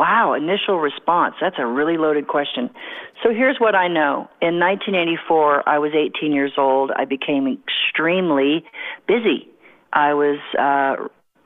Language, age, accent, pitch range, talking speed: English, 40-59, American, 150-180 Hz, 140 wpm